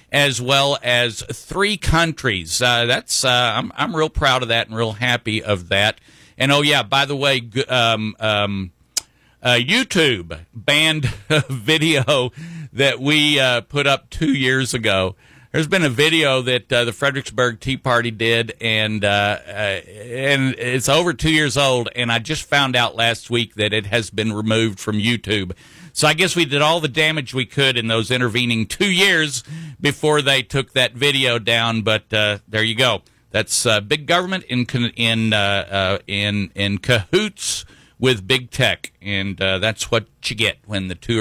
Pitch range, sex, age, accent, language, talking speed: 110-145 Hz, male, 50-69, American, English, 180 wpm